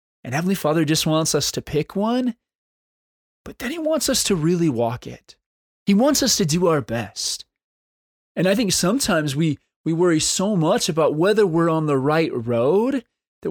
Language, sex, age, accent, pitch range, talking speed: English, male, 20-39, American, 130-175 Hz, 185 wpm